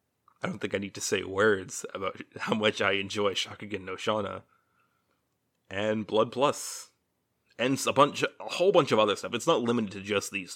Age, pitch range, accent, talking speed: 30-49, 105-130 Hz, American, 205 wpm